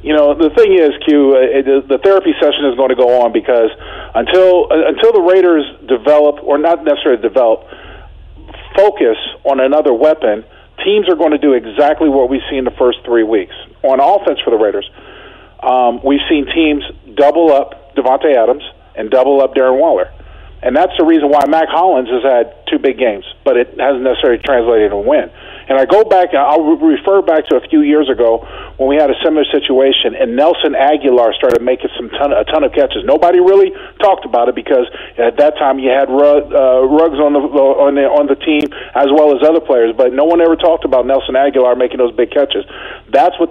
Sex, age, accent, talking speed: male, 40-59, American, 210 wpm